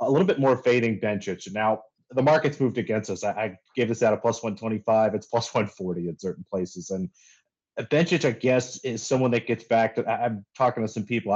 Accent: American